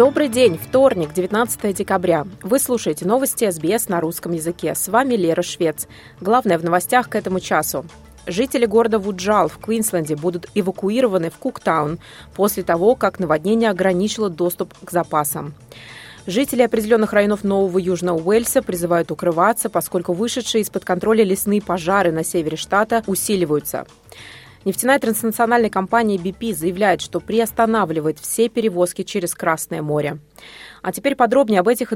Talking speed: 140 wpm